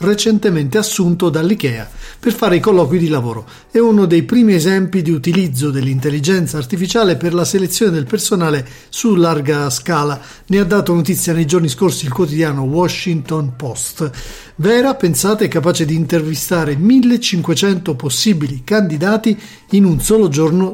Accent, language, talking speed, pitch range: native, Italian, 145 wpm, 145-190 Hz